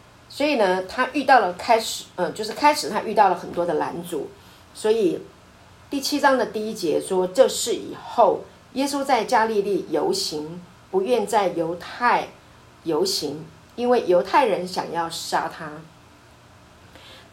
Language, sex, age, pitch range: Chinese, female, 50-69, 180-290 Hz